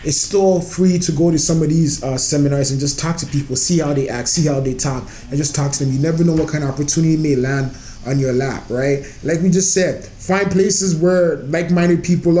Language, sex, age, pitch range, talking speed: English, male, 20-39, 140-170 Hz, 245 wpm